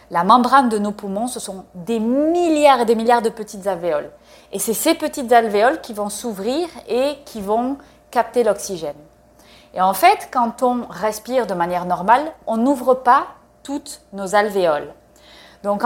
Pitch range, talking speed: 205-270 Hz, 165 wpm